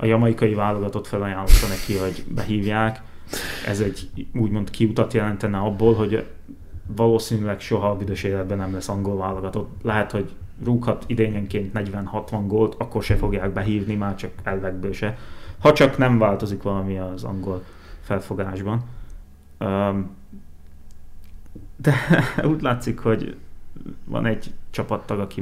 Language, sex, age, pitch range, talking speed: Hungarian, male, 20-39, 95-115 Hz, 125 wpm